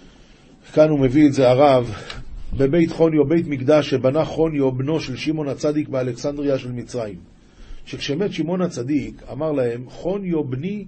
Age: 40-59